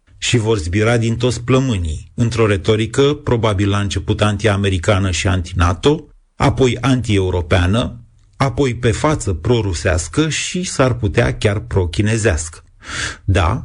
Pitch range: 100-125 Hz